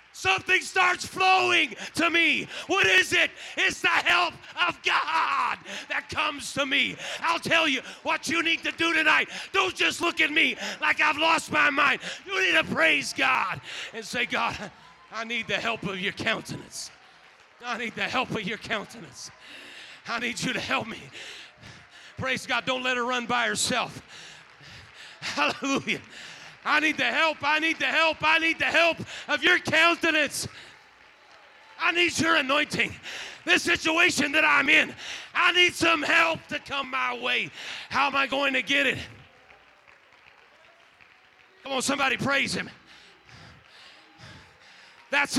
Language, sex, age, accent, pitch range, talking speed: English, male, 30-49, American, 250-325 Hz, 155 wpm